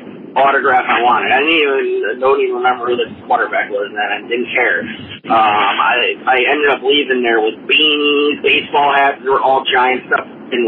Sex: male